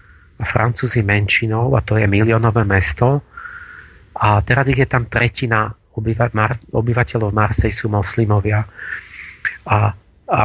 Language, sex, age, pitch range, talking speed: Slovak, male, 40-59, 105-130 Hz, 125 wpm